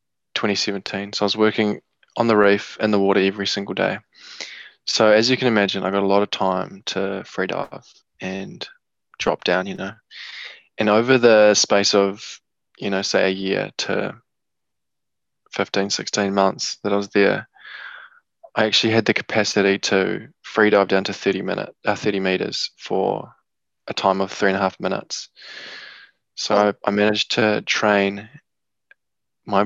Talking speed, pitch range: 165 wpm, 95-110 Hz